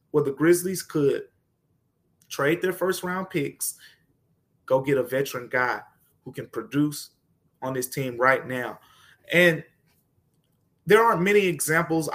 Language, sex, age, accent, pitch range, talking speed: English, male, 20-39, American, 145-180 Hz, 135 wpm